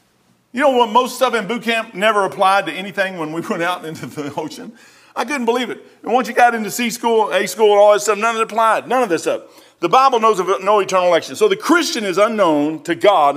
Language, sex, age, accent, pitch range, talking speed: English, male, 40-59, American, 170-240 Hz, 260 wpm